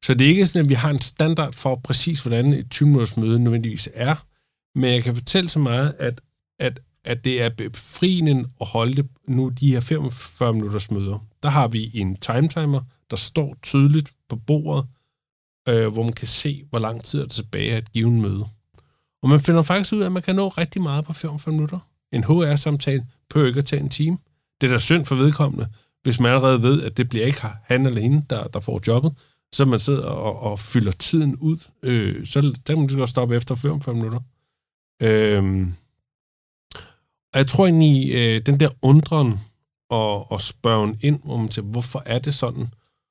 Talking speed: 200 wpm